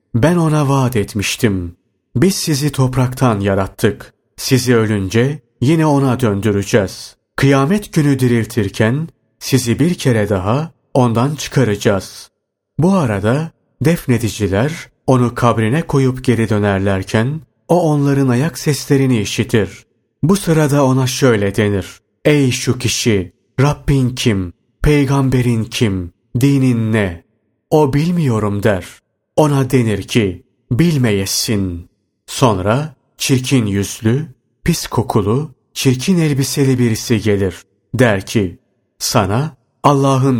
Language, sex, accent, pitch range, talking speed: Turkish, male, native, 105-140 Hz, 100 wpm